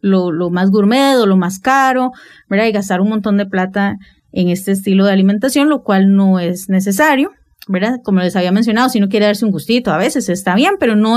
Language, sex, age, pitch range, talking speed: English, female, 30-49, 195-250 Hz, 225 wpm